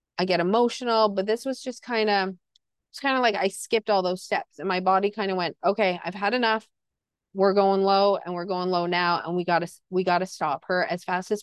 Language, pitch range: English, 180-215 Hz